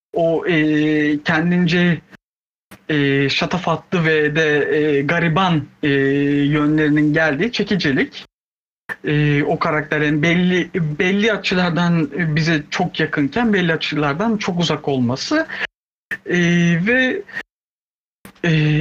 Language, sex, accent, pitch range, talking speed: Turkish, male, native, 150-210 Hz, 95 wpm